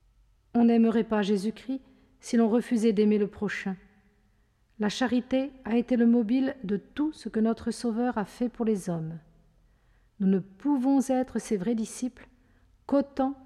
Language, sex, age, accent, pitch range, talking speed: French, female, 50-69, French, 195-250 Hz, 155 wpm